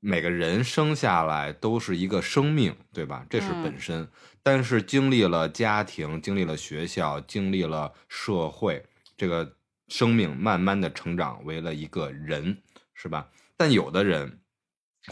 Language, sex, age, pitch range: Chinese, male, 20-39, 75-105 Hz